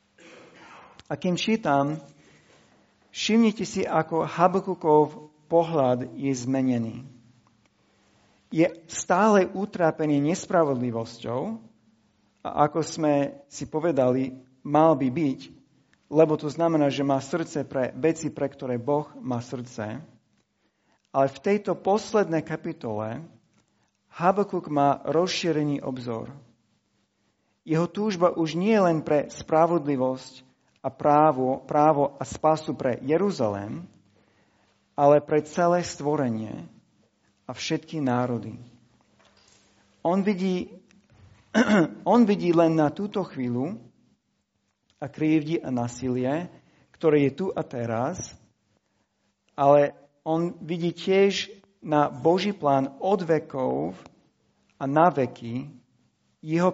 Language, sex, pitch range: Slovak, male, 125-165 Hz